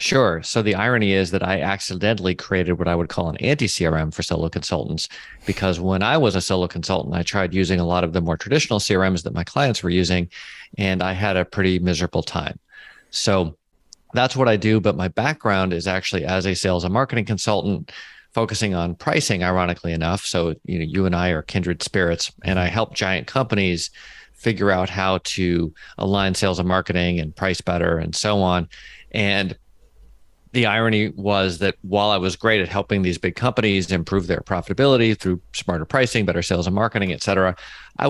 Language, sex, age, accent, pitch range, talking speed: English, male, 40-59, American, 90-105 Hz, 195 wpm